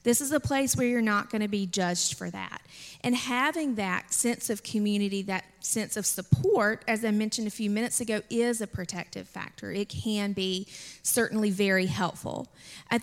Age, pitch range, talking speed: 30-49, 195-230 Hz, 190 wpm